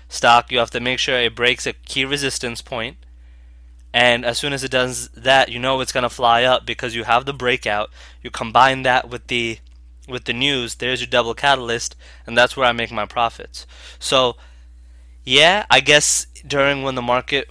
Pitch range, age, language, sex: 110-130 Hz, 20-39, English, male